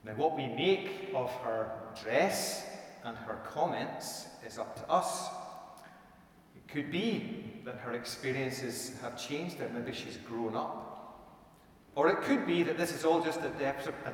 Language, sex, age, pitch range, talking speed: English, male, 40-59, 130-190 Hz, 165 wpm